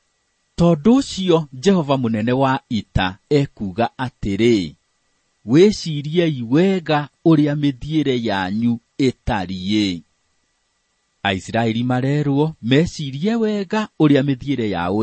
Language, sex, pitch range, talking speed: English, male, 105-155 Hz, 80 wpm